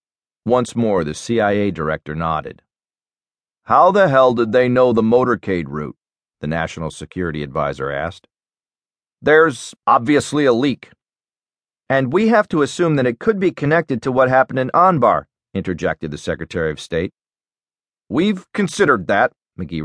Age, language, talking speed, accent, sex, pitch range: 40-59, English, 145 wpm, American, male, 105-150 Hz